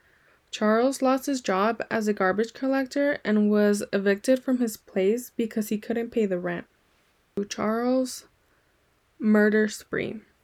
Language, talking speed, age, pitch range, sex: English, 145 wpm, 10-29, 200-240 Hz, female